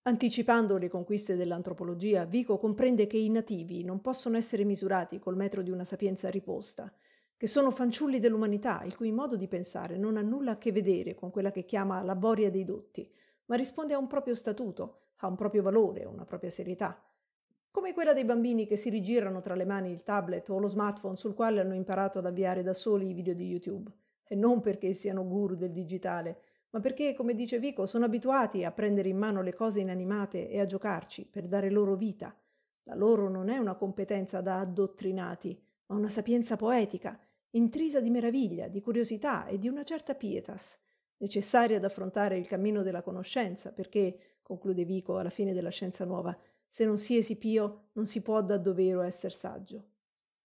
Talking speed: 185 wpm